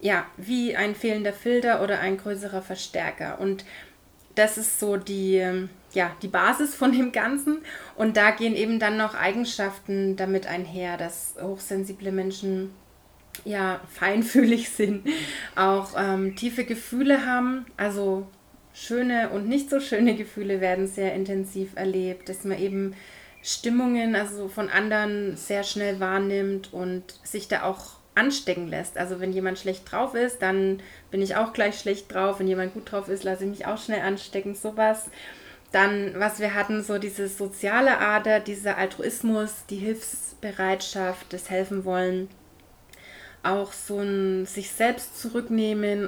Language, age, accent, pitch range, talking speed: German, 20-39, German, 190-215 Hz, 145 wpm